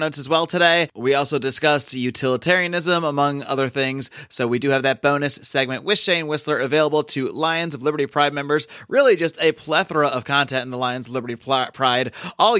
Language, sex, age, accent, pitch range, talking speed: English, male, 30-49, American, 135-165 Hz, 195 wpm